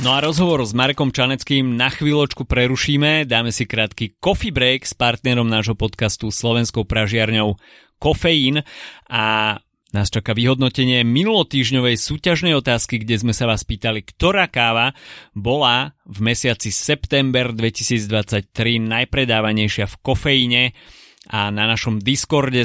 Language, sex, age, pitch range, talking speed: Slovak, male, 30-49, 110-135 Hz, 125 wpm